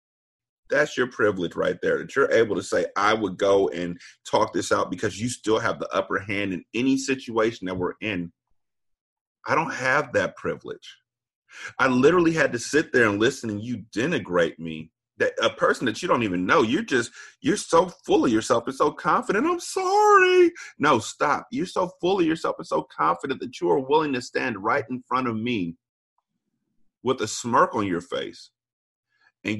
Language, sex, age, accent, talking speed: English, male, 30-49, American, 195 wpm